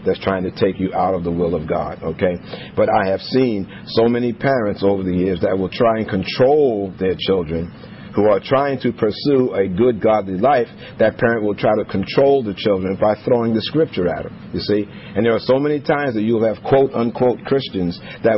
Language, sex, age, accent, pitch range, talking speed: English, male, 50-69, American, 100-120 Hz, 215 wpm